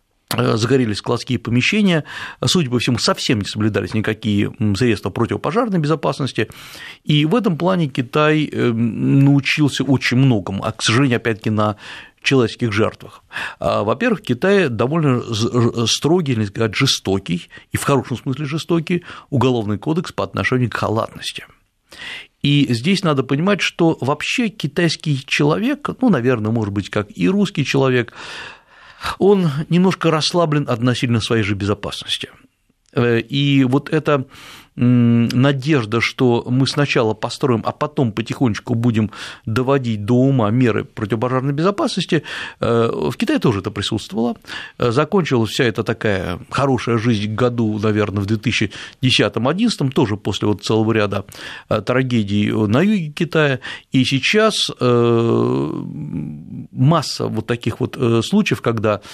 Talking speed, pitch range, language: 120 wpm, 110-150 Hz, Russian